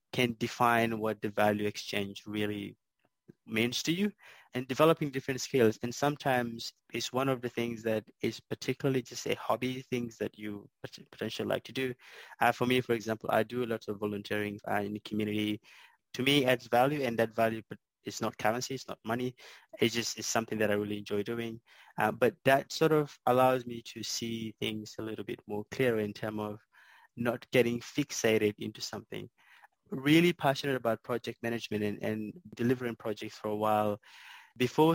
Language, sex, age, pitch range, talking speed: English, male, 20-39, 110-135 Hz, 185 wpm